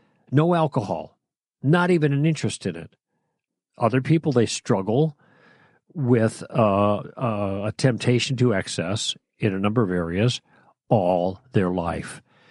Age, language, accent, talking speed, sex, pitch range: 50-69, English, American, 130 wpm, male, 105-140 Hz